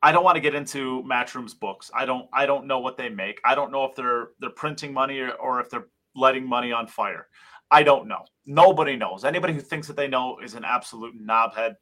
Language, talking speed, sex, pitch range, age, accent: English, 240 wpm, male, 115-145 Hz, 30-49, American